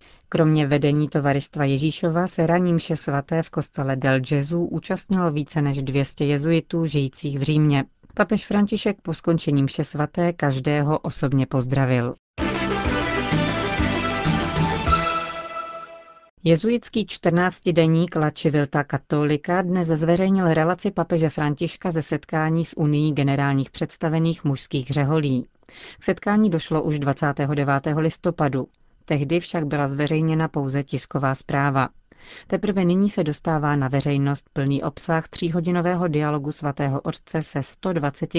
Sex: female